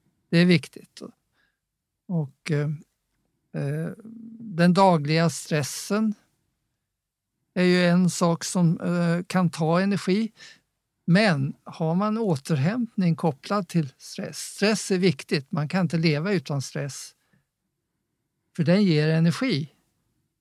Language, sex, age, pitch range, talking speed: English, male, 50-69, 150-185 Hz, 110 wpm